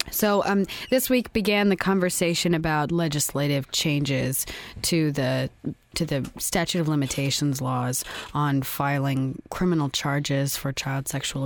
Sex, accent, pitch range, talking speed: female, American, 140-170 Hz, 130 wpm